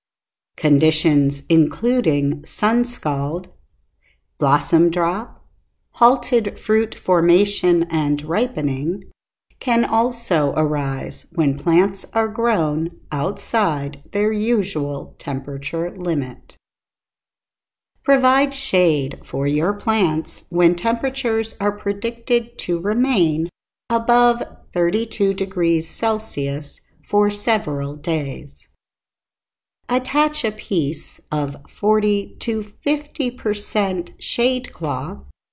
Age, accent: 50-69, American